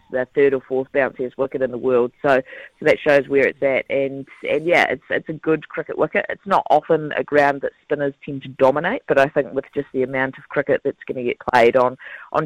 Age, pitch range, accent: 30-49, 130-150 Hz, Australian